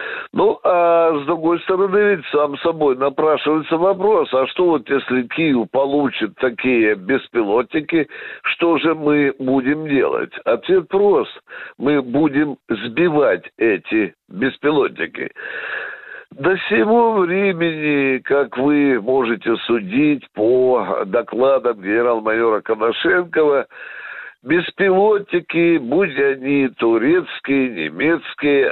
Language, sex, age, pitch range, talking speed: Russian, male, 60-79, 135-185 Hz, 95 wpm